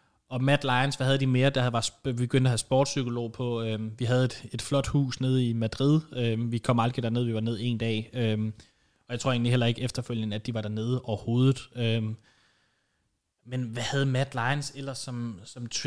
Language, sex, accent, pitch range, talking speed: English, male, Danish, 120-135 Hz, 210 wpm